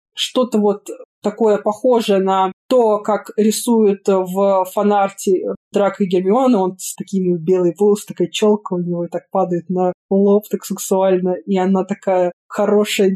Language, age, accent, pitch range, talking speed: Russian, 20-39, native, 190-215 Hz, 150 wpm